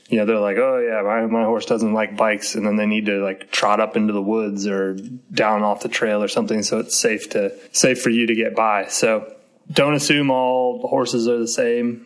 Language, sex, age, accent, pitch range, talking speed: English, male, 20-39, American, 105-130 Hz, 240 wpm